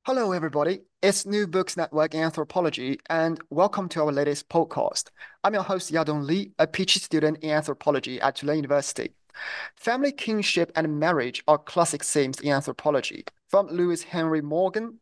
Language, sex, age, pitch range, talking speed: English, male, 30-49, 150-185 Hz, 160 wpm